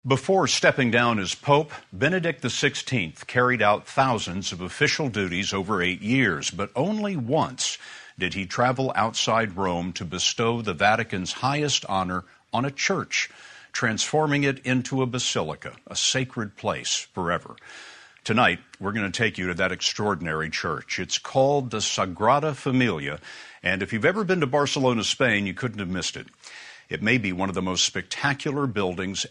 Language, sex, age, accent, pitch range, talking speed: English, male, 60-79, American, 100-135 Hz, 160 wpm